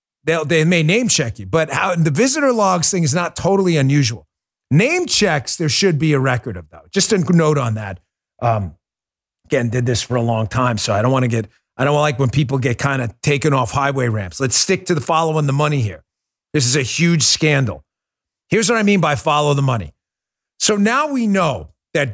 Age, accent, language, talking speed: 40-59, American, English, 220 wpm